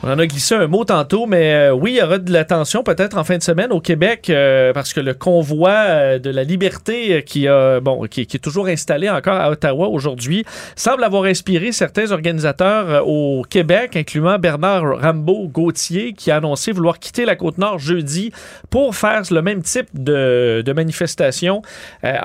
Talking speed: 190 wpm